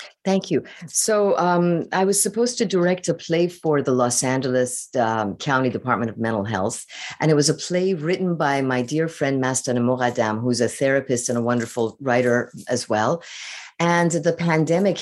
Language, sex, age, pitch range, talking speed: English, female, 50-69, 125-170 Hz, 180 wpm